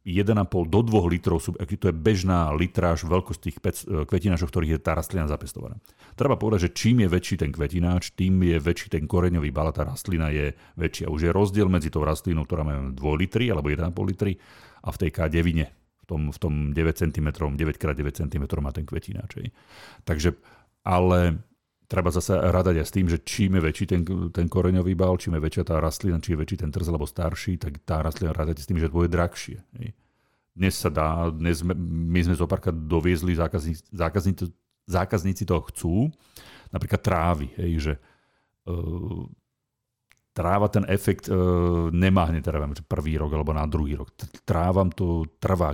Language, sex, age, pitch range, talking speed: Slovak, male, 40-59, 80-95 Hz, 185 wpm